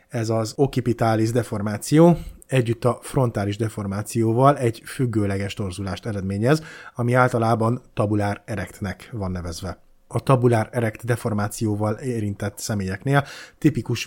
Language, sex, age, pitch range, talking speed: Hungarian, male, 30-49, 105-130 Hz, 100 wpm